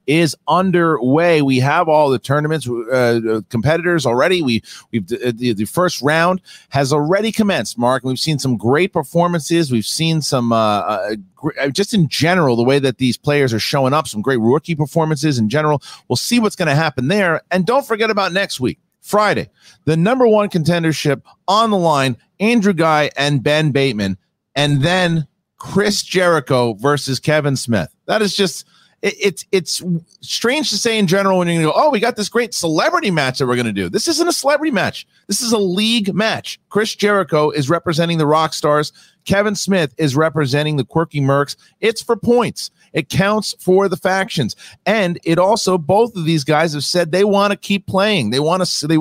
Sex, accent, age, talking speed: male, American, 40-59, 190 wpm